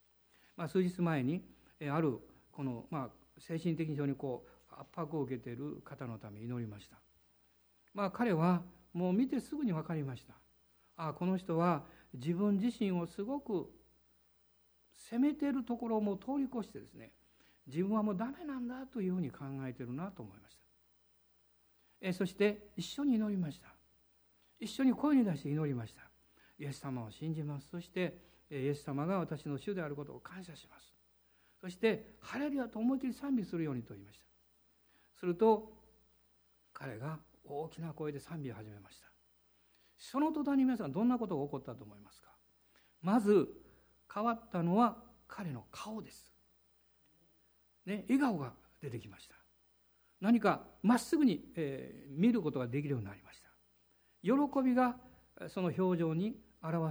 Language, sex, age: Japanese, male, 60-79